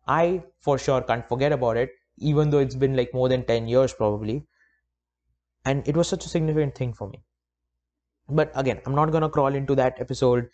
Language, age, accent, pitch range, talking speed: English, 20-39, Indian, 115-160 Hz, 200 wpm